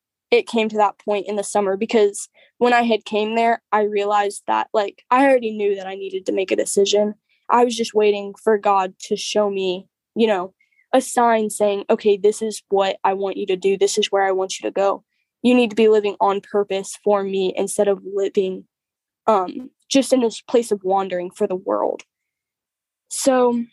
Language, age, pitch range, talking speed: English, 10-29, 200-230 Hz, 205 wpm